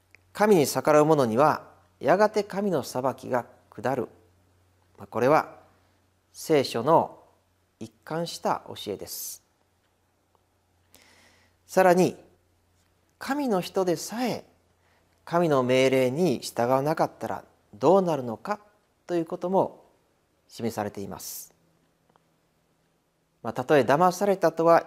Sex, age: male, 40-59